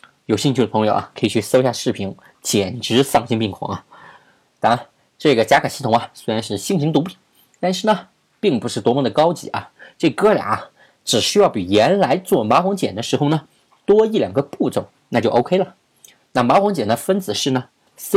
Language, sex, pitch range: Chinese, male, 120-190 Hz